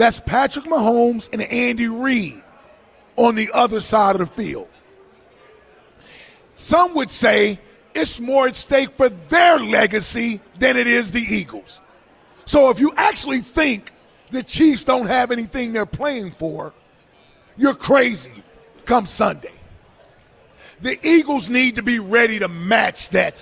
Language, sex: English, male